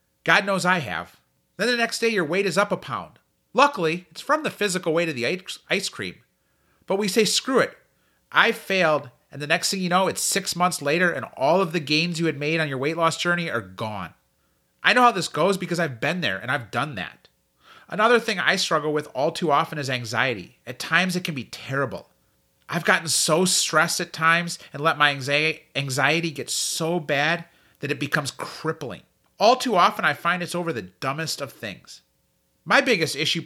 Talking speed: 210 wpm